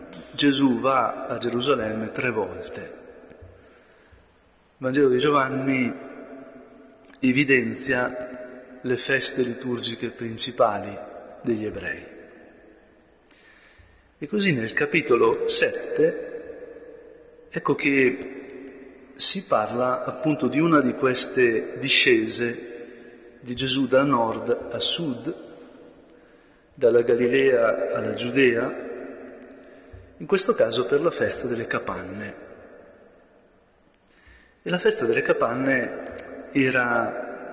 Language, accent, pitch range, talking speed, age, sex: Italian, native, 120-155 Hz, 90 wpm, 40-59, male